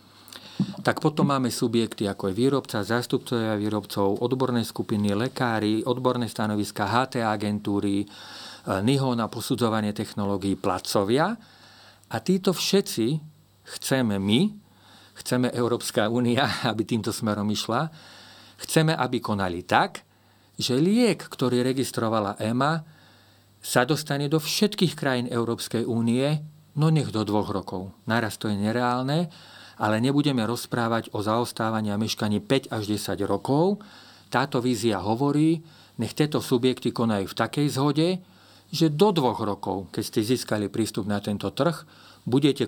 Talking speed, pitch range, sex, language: 125 wpm, 105-135 Hz, male, Slovak